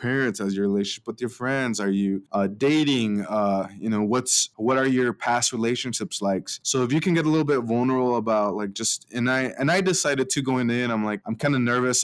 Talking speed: 240 wpm